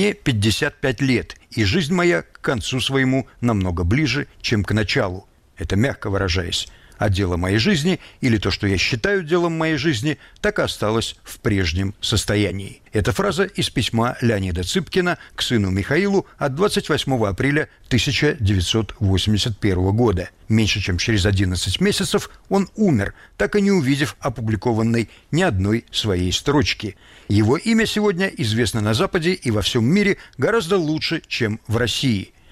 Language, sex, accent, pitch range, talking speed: Russian, male, native, 100-160 Hz, 150 wpm